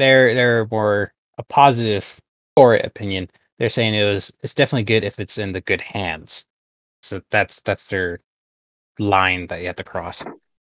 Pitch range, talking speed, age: 95-115 Hz, 170 wpm, 20-39